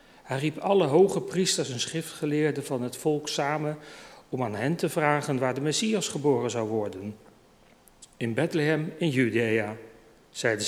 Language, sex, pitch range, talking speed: Dutch, male, 120-155 Hz, 150 wpm